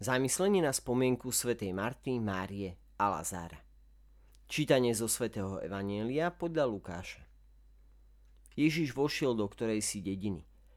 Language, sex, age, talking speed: Slovak, male, 40-59, 105 wpm